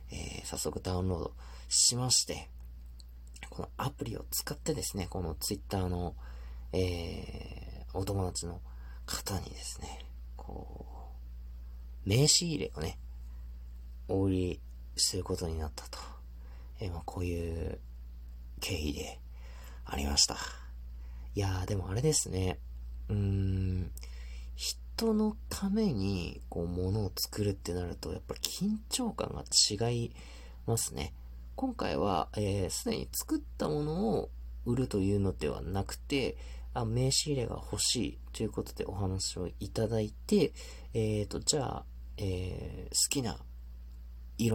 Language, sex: Japanese, male